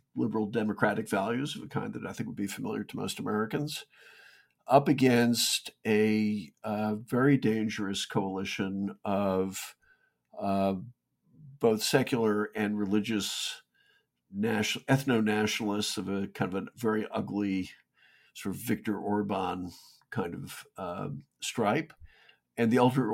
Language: English